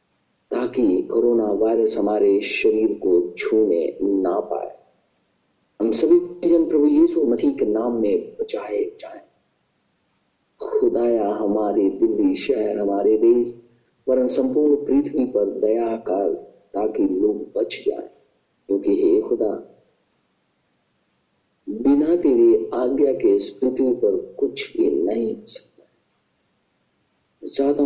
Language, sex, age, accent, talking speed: Hindi, male, 50-69, native, 110 wpm